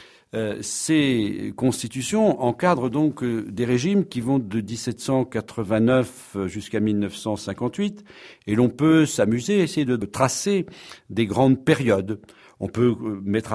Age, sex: 60-79, male